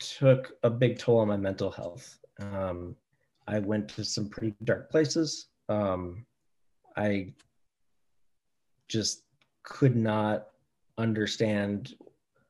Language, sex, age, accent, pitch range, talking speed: English, male, 30-49, American, 100-120 Hz, 105 wpm